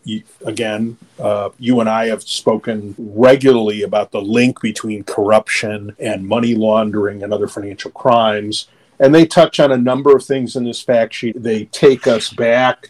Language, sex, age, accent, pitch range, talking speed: English, male, 40-59, American, 105-120 Hz, 165 wpm